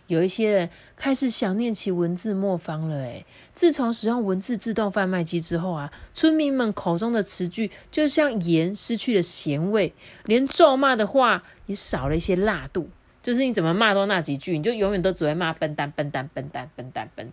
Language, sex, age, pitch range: Chinese, female, 30-49, 165-240 Hz